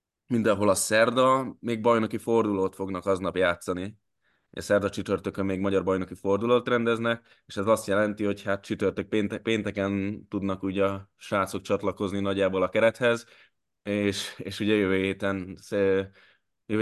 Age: 20-39